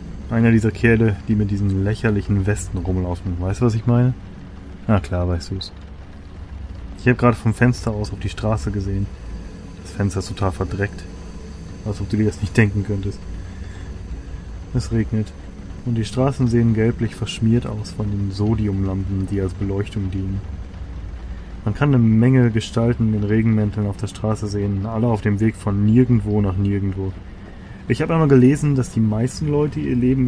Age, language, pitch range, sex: 20-39, German, 95-115 Hz, male